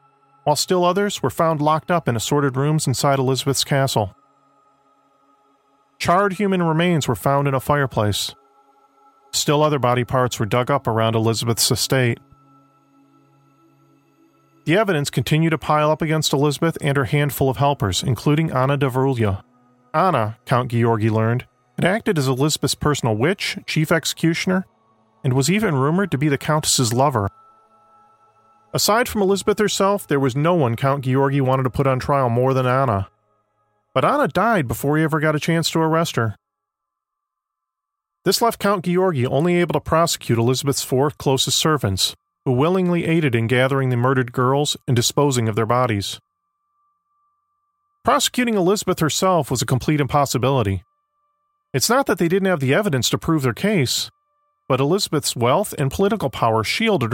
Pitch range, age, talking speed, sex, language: 125-175 Hz, 40-59, 160 wpm, male, English